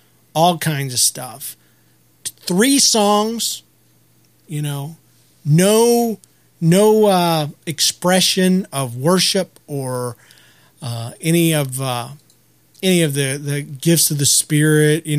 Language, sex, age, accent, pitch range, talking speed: English, male, 40-59, American, 140-200 Hz, 110 wpm